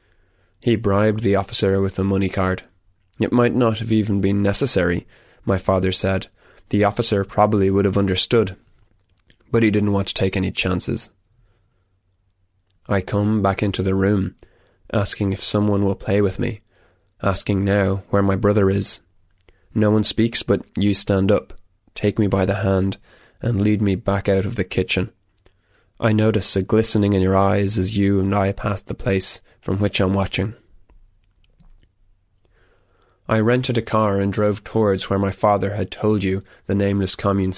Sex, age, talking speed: male, 20-39, 170 wpm